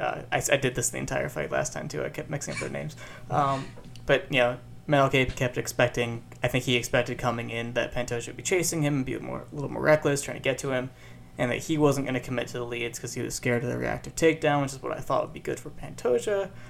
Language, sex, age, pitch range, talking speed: English, male, 20-39, 120-140 Hz, 275 wpm